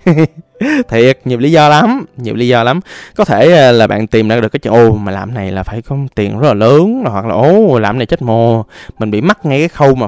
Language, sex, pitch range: Vietnamese, male, 110-150 Hz